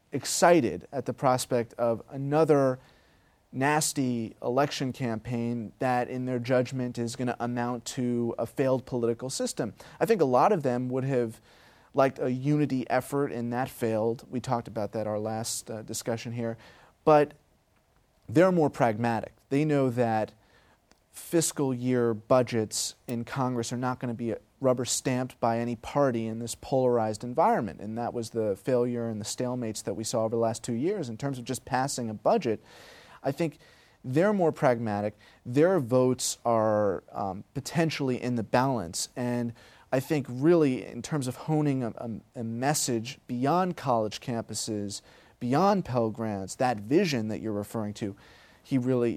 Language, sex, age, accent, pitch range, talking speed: English, male, 30-49, American, 115-130 Hz, 165 wpm